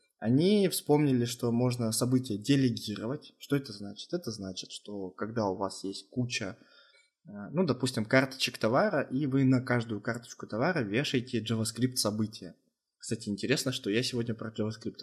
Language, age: Russian, 20-39